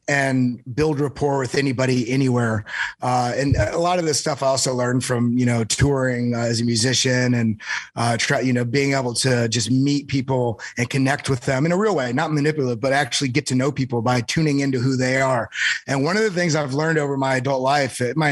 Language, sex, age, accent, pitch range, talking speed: English, male, 30-49, American, 125-155 Hz, 220 wpm